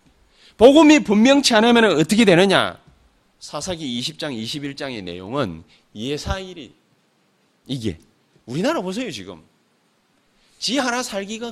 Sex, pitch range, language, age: male, 180-255 Hz, Korean, 30-49